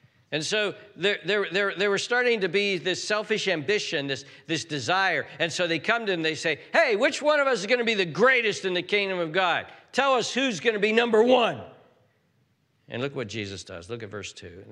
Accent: American